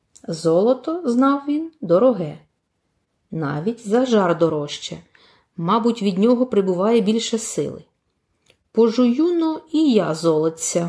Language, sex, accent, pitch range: Ukrainian, female, native, 160-240 Hz